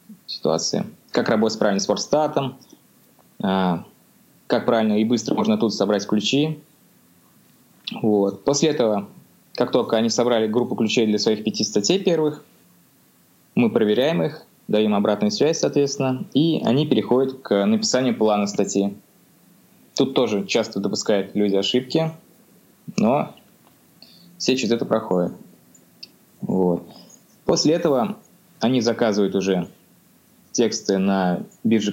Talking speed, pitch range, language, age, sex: 115 wpm, 105-140 Hz, Russian, 20-39, male